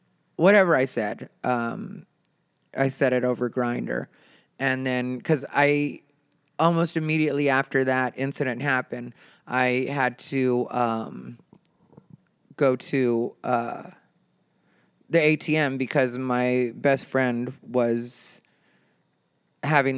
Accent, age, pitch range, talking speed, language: American, 30-49, 120-150 Hz, 100 wpm, English